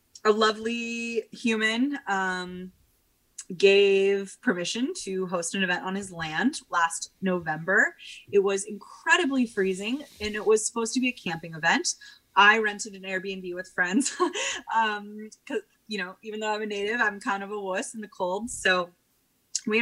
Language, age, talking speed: English, 20-39, 160 wpm